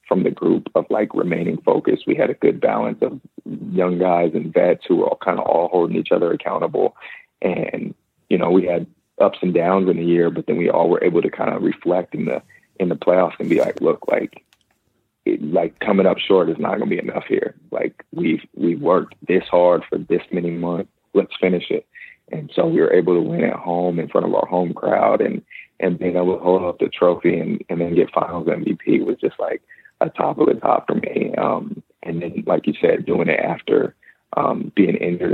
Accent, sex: American, male